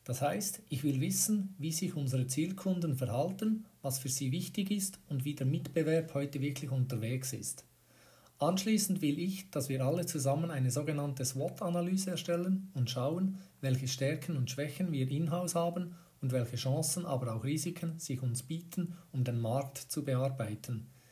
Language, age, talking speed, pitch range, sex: German, 50-69, 160 wpm, 130-165 Hz, male